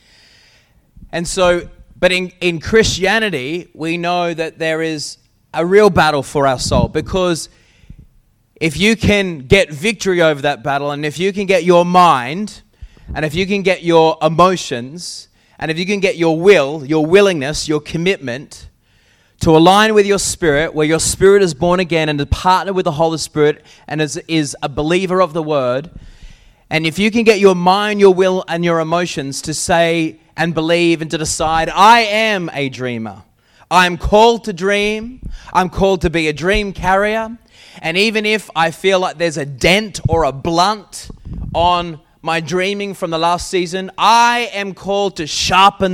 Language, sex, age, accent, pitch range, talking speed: English, male, 20-39, Australian, 155-195 Hz, 175 wpm